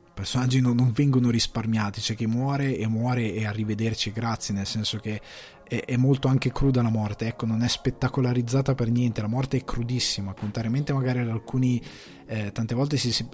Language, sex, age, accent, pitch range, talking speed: Italian, male, 20-39, native, 105-125 Hz, 195 wpm